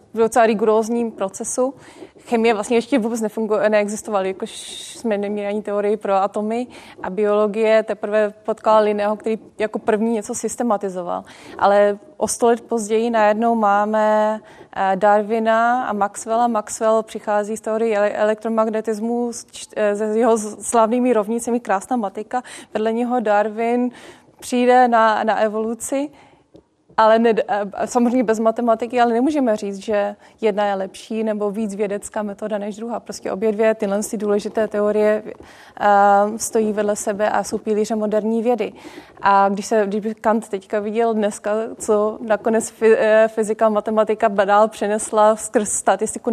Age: 20-39